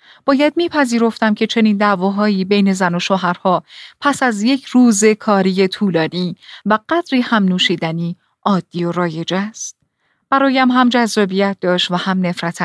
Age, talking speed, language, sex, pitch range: 30-49, 140 wpm, Persian, female, 185-255 Hz